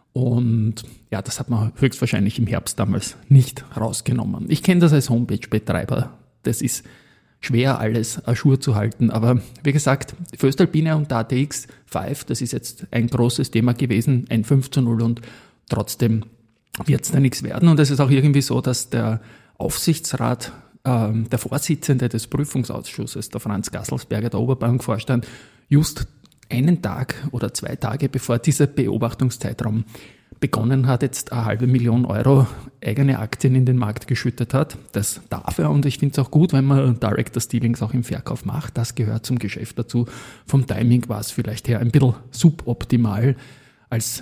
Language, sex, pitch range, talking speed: German, male, 115-135 Hz, 170 wpm